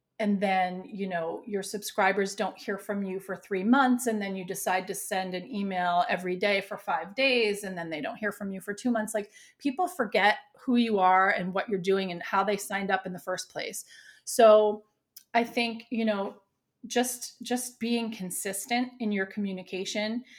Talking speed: 195 wpm